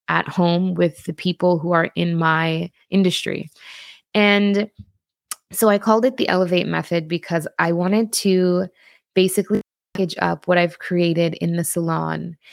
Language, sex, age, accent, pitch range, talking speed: English, female, 20-39, American, 170-185 Hz, 150 wpm